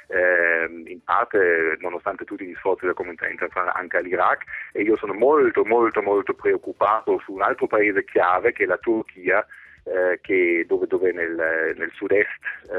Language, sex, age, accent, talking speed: Italian, male, 30-49, native, 170 wpm